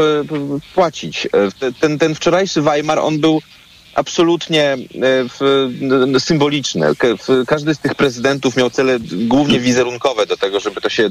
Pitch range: 110-150 Hz